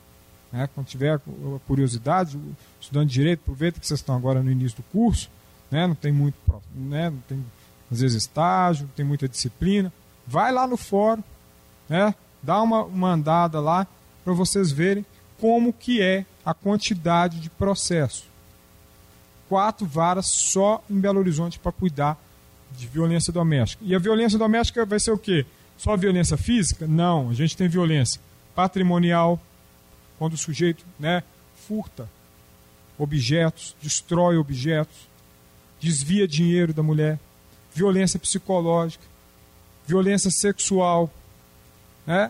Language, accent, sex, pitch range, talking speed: Portuguese, Brazilian, male, 135-195 Hz, 135 wpm